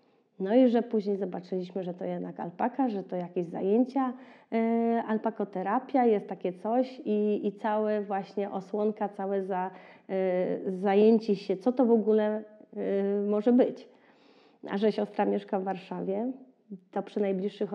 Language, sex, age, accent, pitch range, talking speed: Polish, female, 30-49, native, 190-220 Hz, 135 wpm